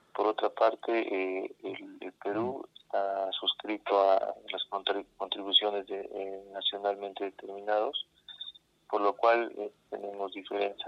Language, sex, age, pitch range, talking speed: Spanish, male, 30-49, 95-105 Hz, 120 wpm